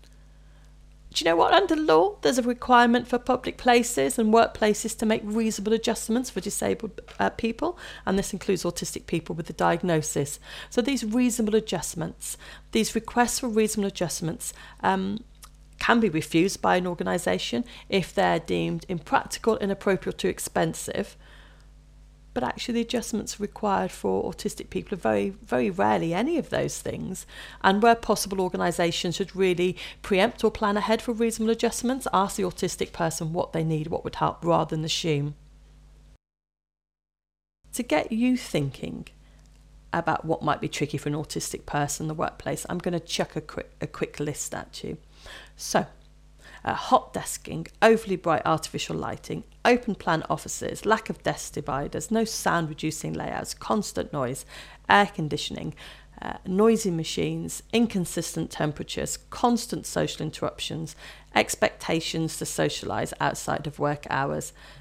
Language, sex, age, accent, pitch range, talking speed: English, female, 40-59, British, 160-225 Hz, 145 wpm